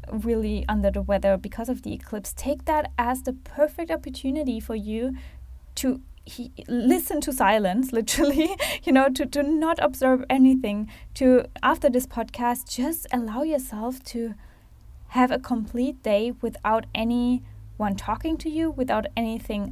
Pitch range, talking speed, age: 210-270 Hz, 145 wpm, 10-29